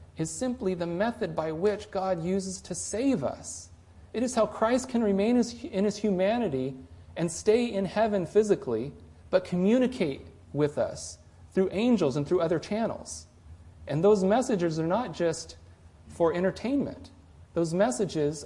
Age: 40-59